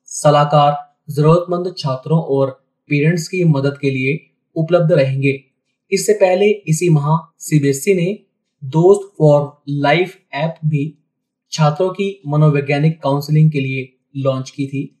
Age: 20-39